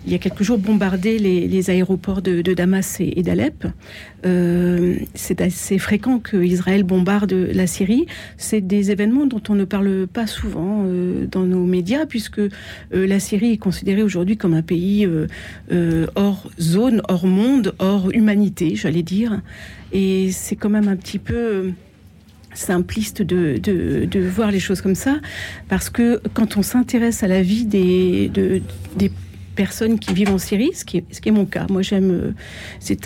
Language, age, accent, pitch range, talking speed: French, 50-69, French, 180-205 Hz, 180 wpm